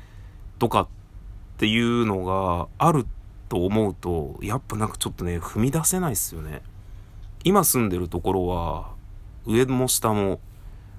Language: Japanese